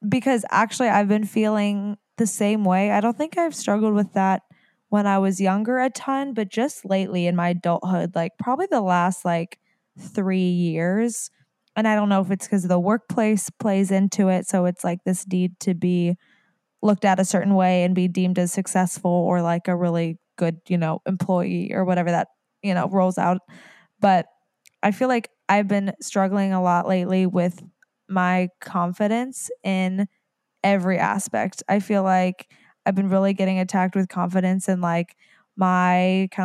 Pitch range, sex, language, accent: 185-210 Hz, female, English, American